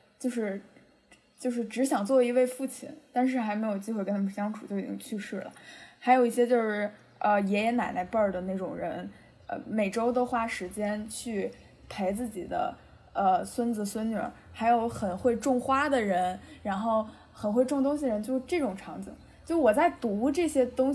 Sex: female